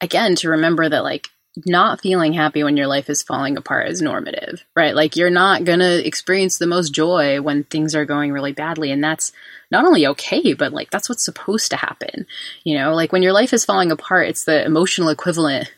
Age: 20-39